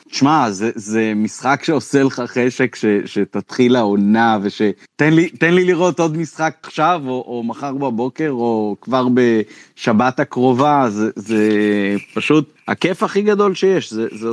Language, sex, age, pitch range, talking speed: Hebrew, male, 30-49, 120-150 Hz, 155 wpm